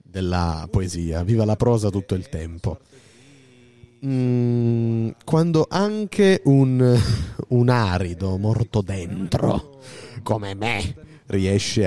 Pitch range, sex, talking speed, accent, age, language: 90-120 Hz, male, 95 wpm, native, 30-49, Italian